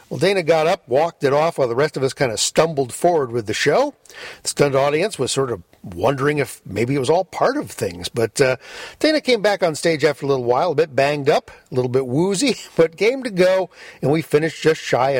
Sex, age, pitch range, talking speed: male, 50-69, 130-190 Hz, 245 wpm